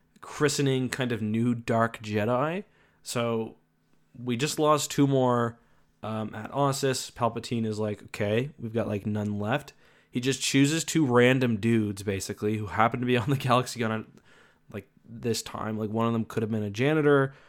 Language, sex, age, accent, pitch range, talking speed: English, male, 20-39, American, 110-130 Hz, 180 wpm